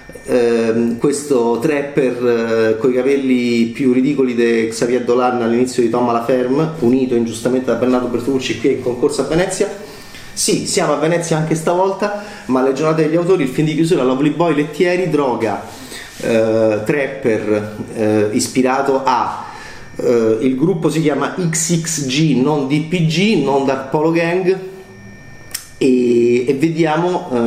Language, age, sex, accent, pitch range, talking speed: Italian, 30-49, male, native, 120-155 Hz, 140 wpm